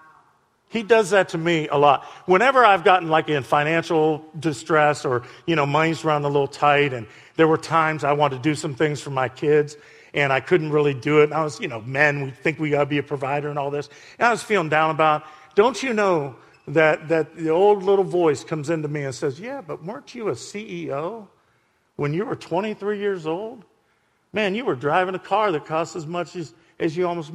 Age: 50-69